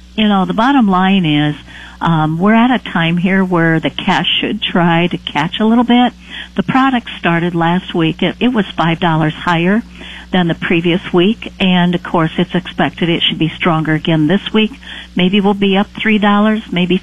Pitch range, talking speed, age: 165-200 Hz, 190 wpm, 50-69